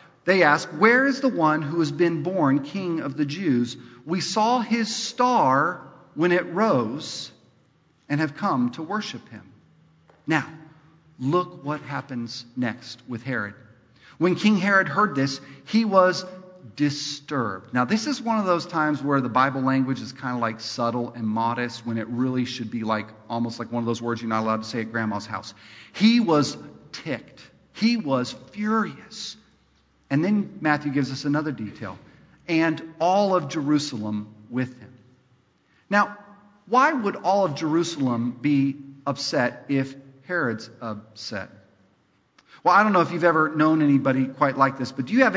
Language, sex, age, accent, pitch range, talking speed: English, male, 40-59, American, 125-180 Hz, 165 wpm